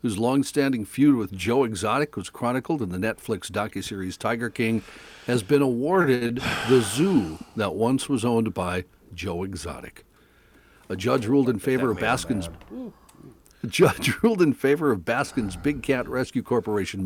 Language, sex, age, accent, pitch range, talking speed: English, male, 60-79, American, 105-140 Hz, 155 wpm